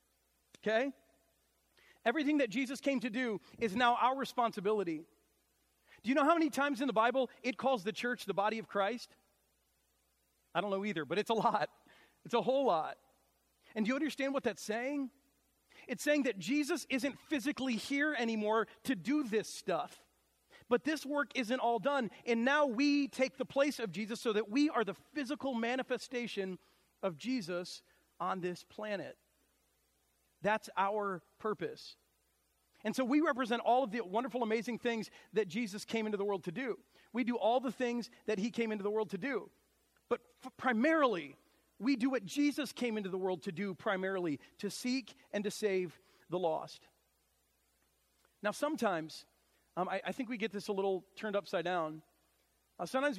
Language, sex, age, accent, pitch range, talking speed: English, male, 40-59, American, 190-260 Hz, 175 wpm